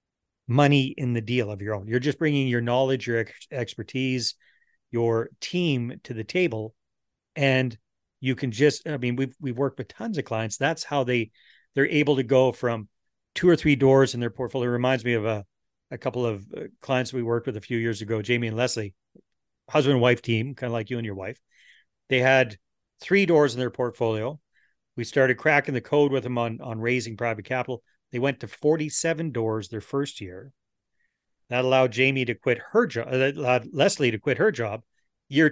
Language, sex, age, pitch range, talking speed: English, male, 40-59, 115-140 Hz, 200 wpm